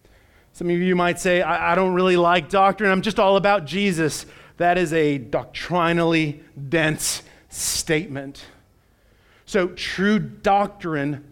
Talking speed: 135 wpm